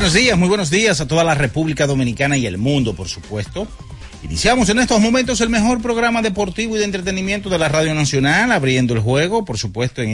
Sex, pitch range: male, 100-140 Hz